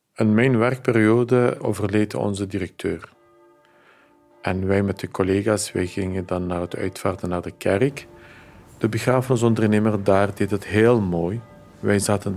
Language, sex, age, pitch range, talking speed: Dutch, male, 50-69, 95-125 Hz, 145 wpm